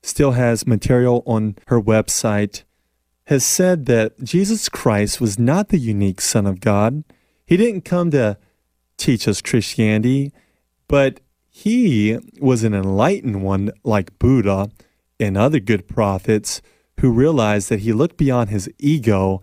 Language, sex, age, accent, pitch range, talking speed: English, male, 30-49, American, 100-130 Hz, 140 wpm